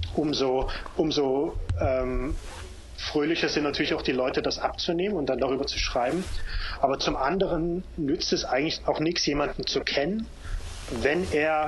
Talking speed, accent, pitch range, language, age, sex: 150 wpm, German, 120-155 Hz, German, 30-49, male